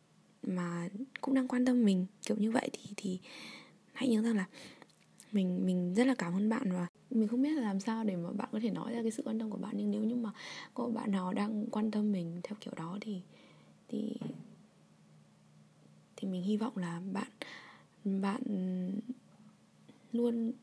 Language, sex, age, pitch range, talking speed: Vietnamese, female, 20-39, 185-240 Hz, 190 wpm